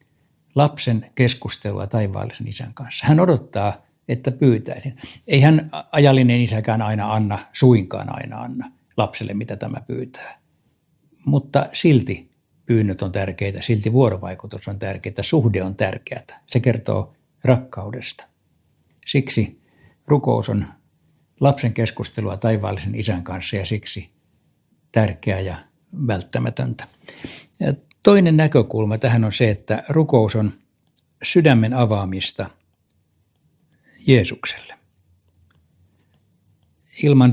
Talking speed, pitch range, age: 100 wpm, 100-130 Hz, 60-79